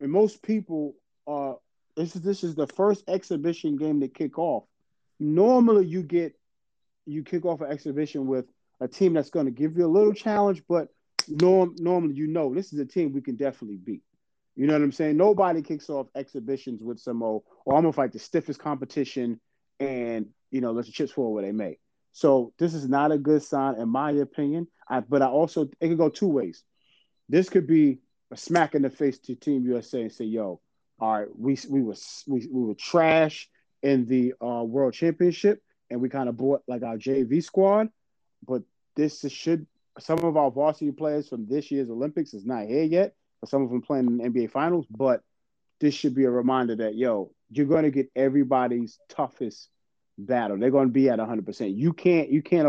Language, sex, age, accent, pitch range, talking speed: English, male, 30-49, American, 125-160 Hz, 205 wpm